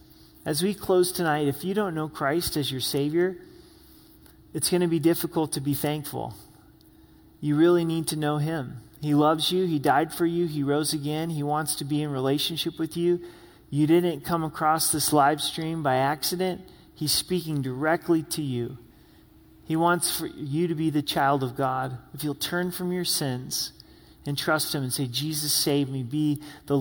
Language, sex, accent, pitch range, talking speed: English, male, American, 140-170 Hz, 190 wpm